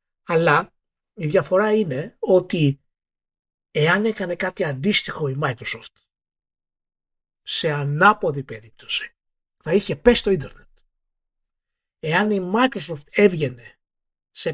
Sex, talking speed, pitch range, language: male, 100 wpm, 145-230 Hz, Greek